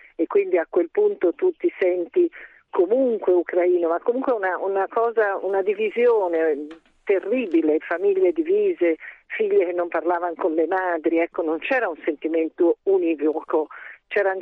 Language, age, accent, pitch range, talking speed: Italian, 50-69, native, 165-245 Hz, 140 wpm